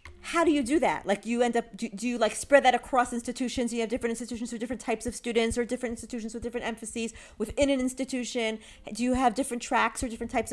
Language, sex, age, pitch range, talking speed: English, female, 40-59, 195-255 Hz, 245 wpm